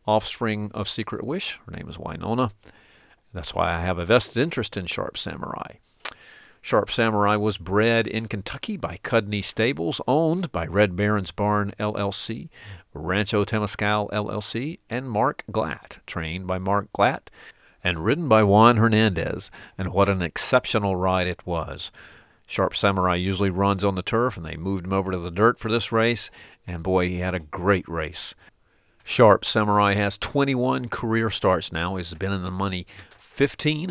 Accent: American